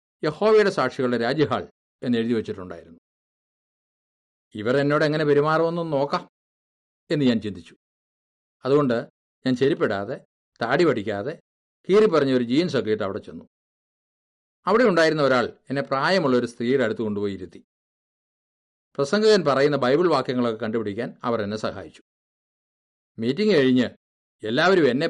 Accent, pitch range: native, 110-145 Hz